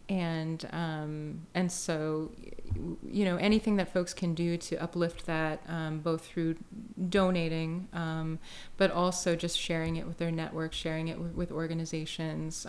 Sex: female